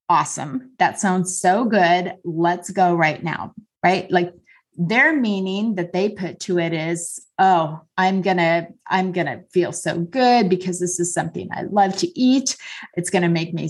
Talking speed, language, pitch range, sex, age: 185 wpm, English, 175-240 Hz, female, 30-49